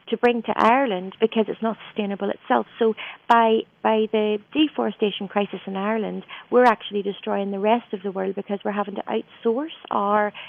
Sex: female